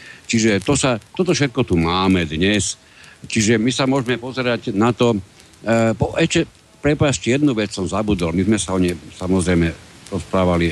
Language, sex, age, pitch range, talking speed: Slovak, male, 60-79, 90-115 Hz, 150 wpm